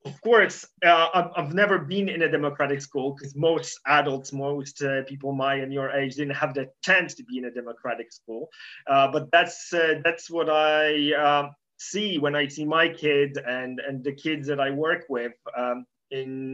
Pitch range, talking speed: 140-170 Hz, 195 wpm